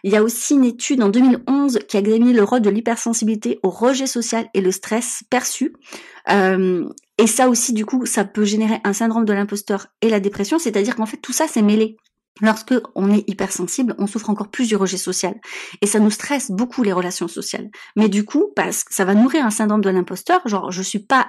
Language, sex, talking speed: French, female, 225 wpm